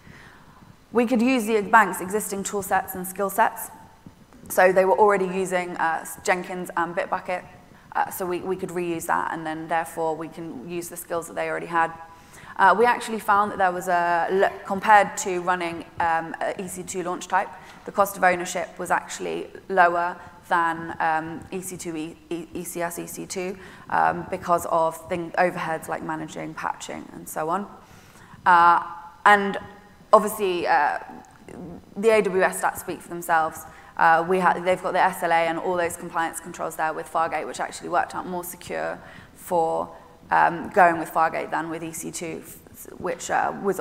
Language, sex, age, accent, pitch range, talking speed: English, female, 20-39, British, 165-190 Hz, 160 wpm